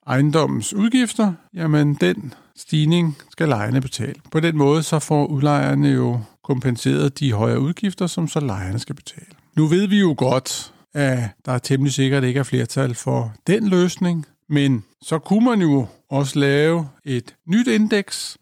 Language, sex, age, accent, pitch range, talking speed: Danish, male, 50-69, native, 130-160 Hz, 165 wpm